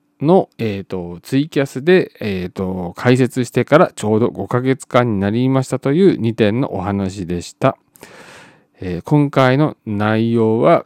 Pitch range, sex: 100-135 Hz, male